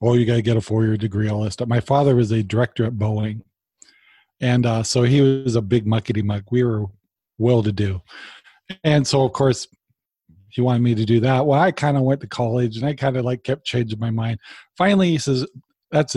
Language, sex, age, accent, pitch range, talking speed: English, male, 40-59, American, 115-140 Hz, 220 wpm